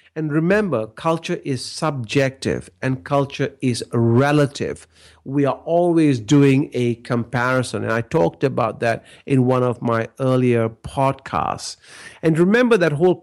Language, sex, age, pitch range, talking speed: English, male, 50-69, 125-160 Hz, 135 wpm